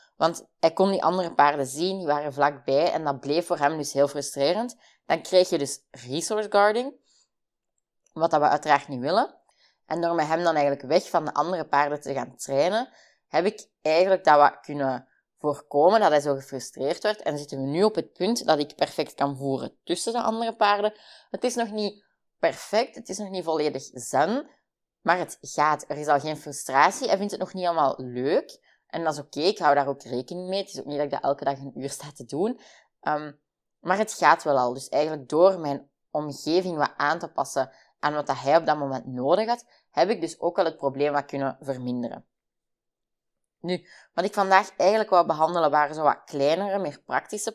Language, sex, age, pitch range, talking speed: Dutch, female, 20-39, 140-190 Hz, 215 wpm